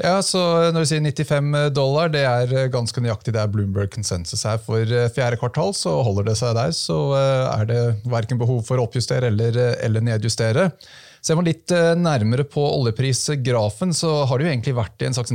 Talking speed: 190 wpm